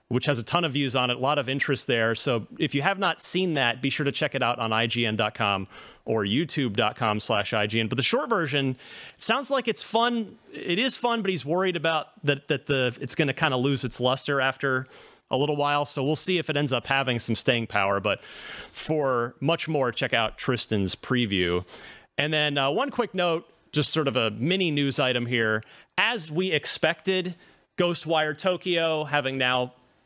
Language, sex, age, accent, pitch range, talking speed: English, male, 30-49, American, 125-175 Hz, 205 wpm